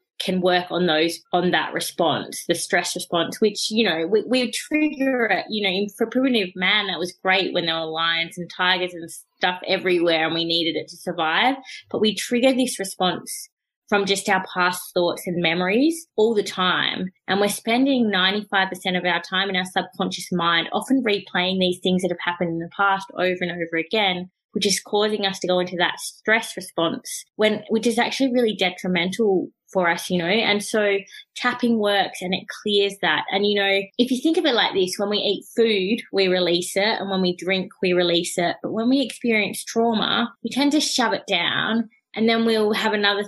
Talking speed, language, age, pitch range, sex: 205 wpm, English, 20-39, 180-225 Hz, female